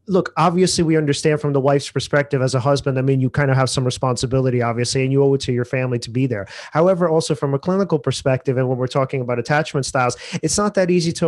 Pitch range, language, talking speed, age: 130-155 Hz, English, 255 wpm, 30-49